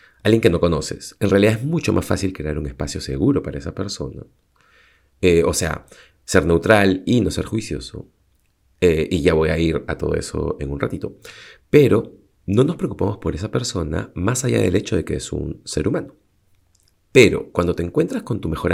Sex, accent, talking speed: male, Argentinian, 200 wpm